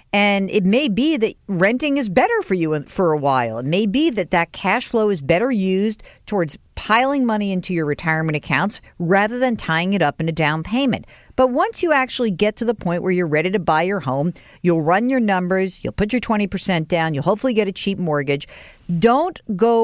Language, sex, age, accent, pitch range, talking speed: English, female, 50-69, American, 155-210 Hz, 215 wpm